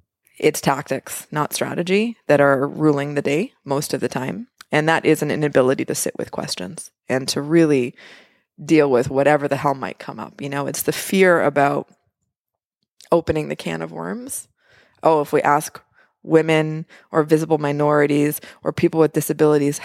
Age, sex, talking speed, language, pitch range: 20-39, female, 170 wpm, English, 145-165 Hz